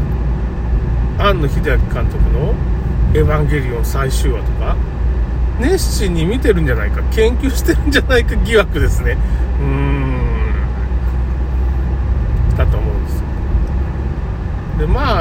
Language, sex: Japanese, male